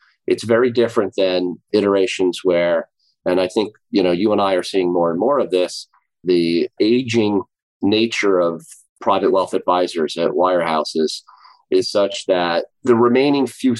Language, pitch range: English, 90-120 Hz